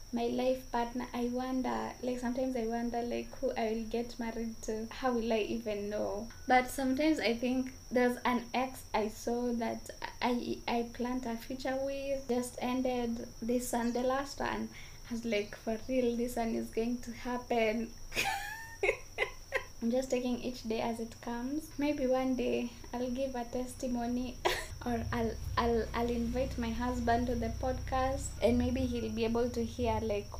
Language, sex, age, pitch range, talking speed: English, female, 20-39, 225-250 Hz, 175 wpm